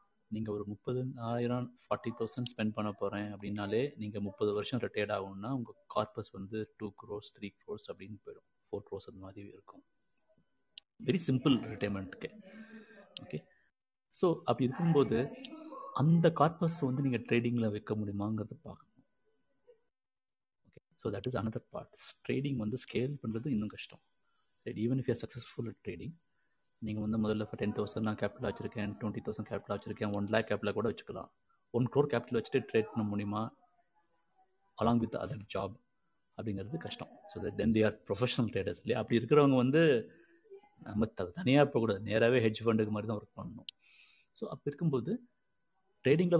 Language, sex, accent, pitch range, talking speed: Tamil, male, native, 105-150 Hz, 150 wpm